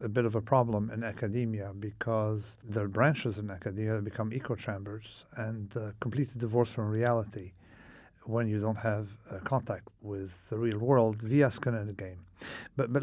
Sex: male